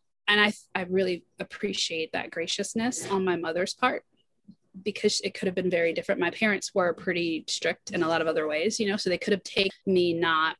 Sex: female